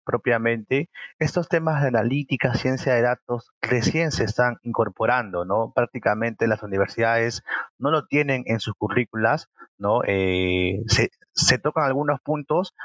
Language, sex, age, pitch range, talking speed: Spanish, male, 30-49, 115-140 Hz, 135 wpm